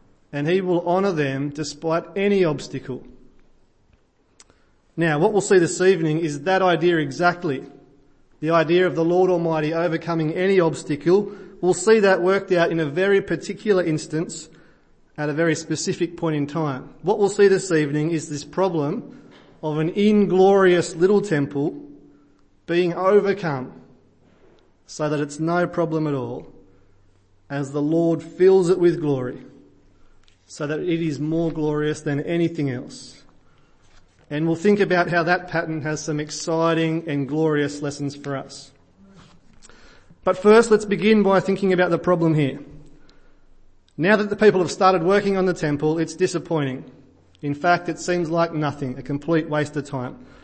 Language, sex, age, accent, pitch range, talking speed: English, male, 30-49, Australian, 145-180 Hz, 155 wpm